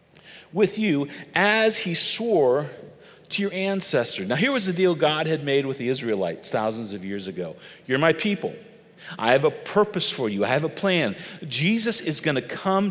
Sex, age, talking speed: male, 40-59, 185 wpm